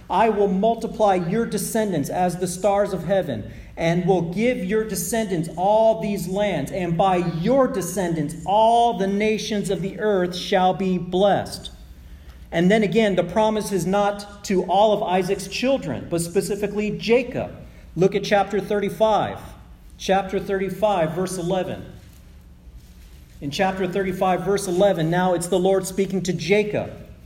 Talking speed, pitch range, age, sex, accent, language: 145 wpm, 150-205 Hz, 40-59, male, American, English